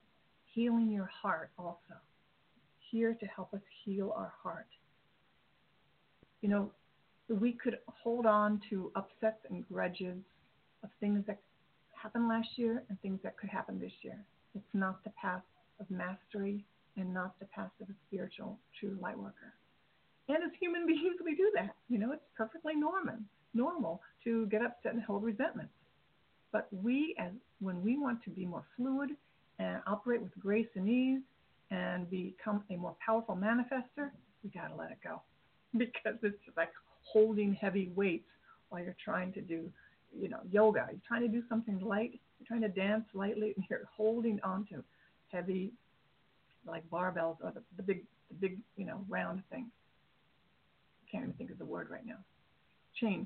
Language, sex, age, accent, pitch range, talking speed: English, female, 50-69, American, 195-230 Hz, 165 wpm